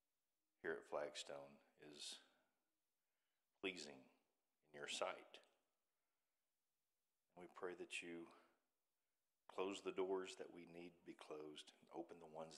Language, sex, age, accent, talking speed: English, male, 50-69, American, 120 wpm